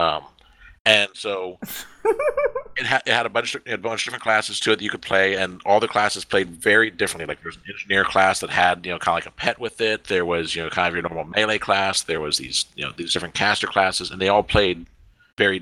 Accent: American